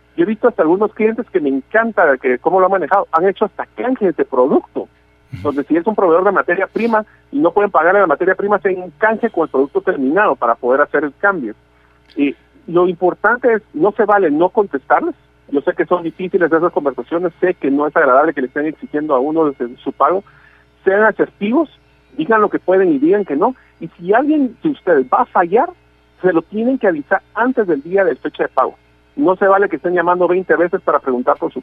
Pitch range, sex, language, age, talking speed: 145-215 Hz, male, Spanish, 50-69, 230 wpm